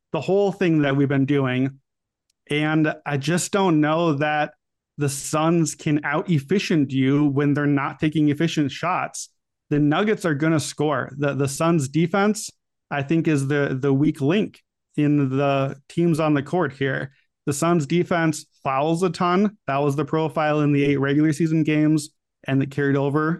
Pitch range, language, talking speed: 140-170 Hz, English, 175 wpm